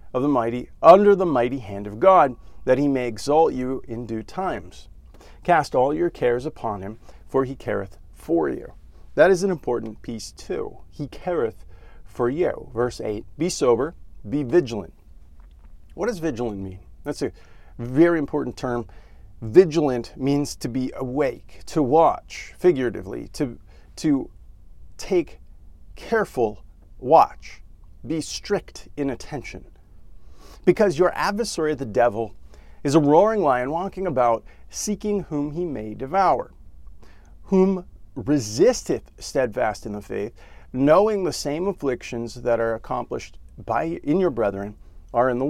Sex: male